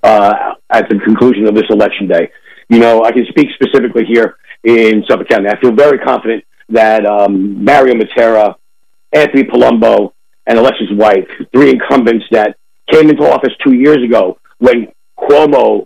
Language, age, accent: English, 50-69, American